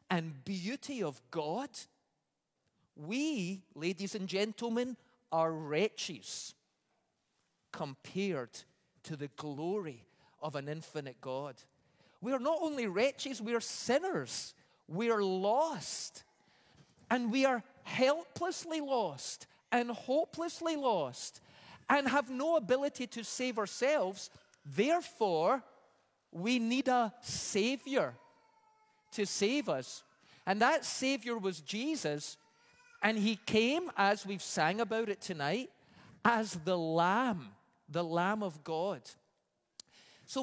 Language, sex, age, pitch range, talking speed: English, male, 40-59, 180-270 Hz, 110 wpm